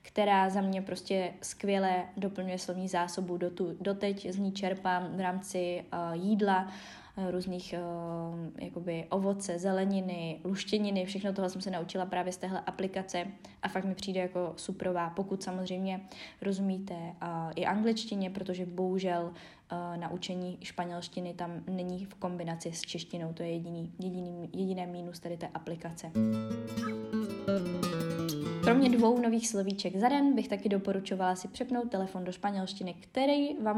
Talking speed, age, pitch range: 130 wpm, 20-39, 180-200 Hz